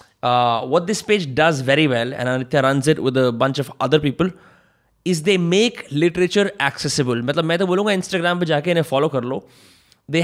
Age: 20-39